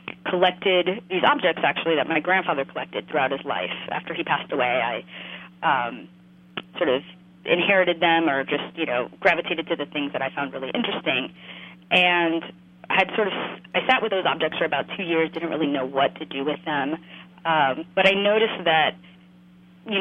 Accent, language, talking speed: American, English, 185 wpm